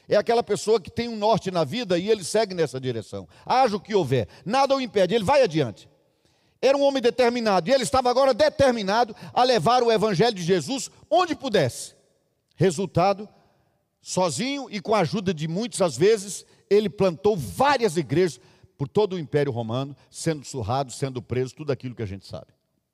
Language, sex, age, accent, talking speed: Portuguese, male, 50-69, Brazilian, 180 wpm